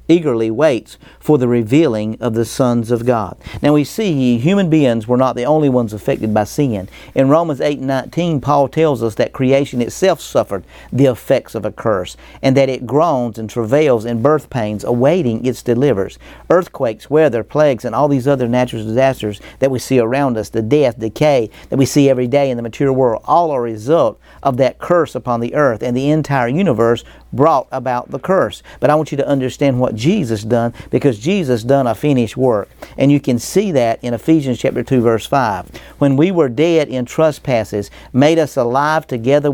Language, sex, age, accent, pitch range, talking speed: English, male, 50-69, American, 120-145 Hz, 200 wpm